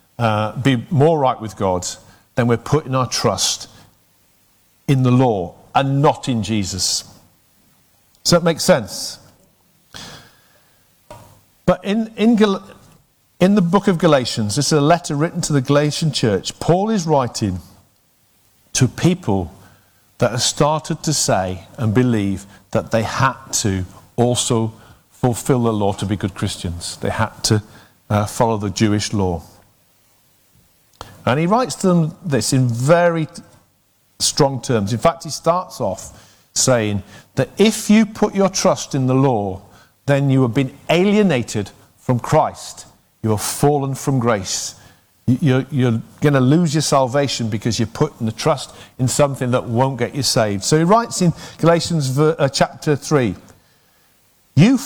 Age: 50-69